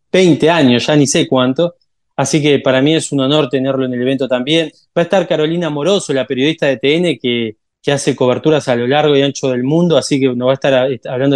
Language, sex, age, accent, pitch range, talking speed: Spanish, male, 20-39, Argentinian, 130-160 Hz, 240 wpm